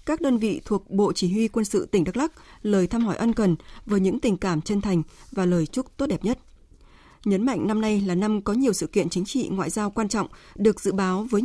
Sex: female